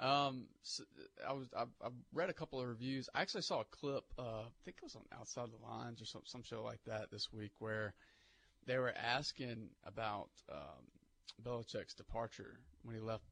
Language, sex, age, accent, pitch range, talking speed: English, male, 30-49, American, 105-125 Hz, 200 wpm